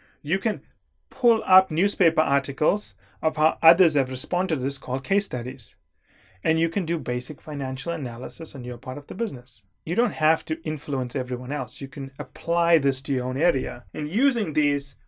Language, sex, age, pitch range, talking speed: English, male, 30-49, 125-155 Hz, 185 wpm